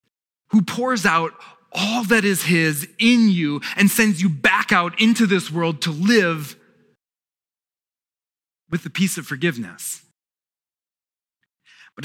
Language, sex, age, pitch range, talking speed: English, male, 20-39, 150-185 Hz, 125 wpm